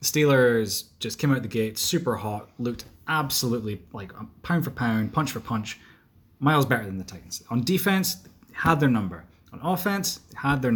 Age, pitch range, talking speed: 20-39, 110-145 Hz, 185 wpm